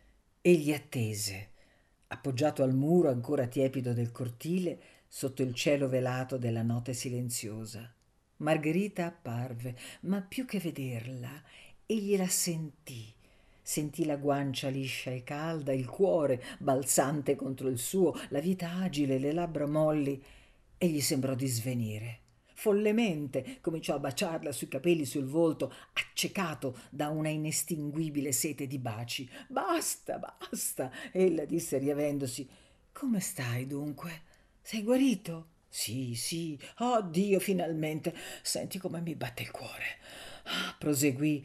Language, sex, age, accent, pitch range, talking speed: Italian, female, 50-69, native, 130-175 Hz, 125 wpm